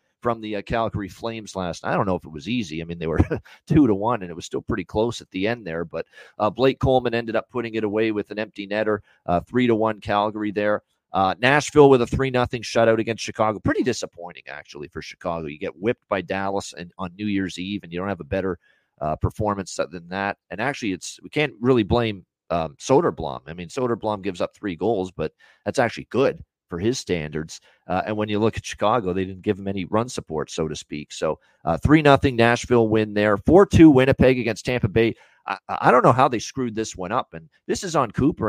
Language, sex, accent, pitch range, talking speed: English, male, American, 90-115 Hz, 235 wpm